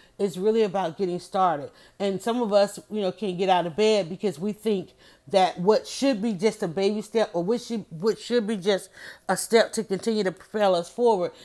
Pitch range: 180-210 Hz